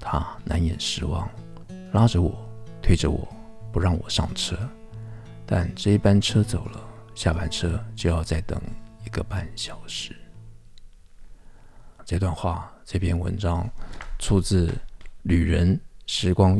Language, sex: Chinese, male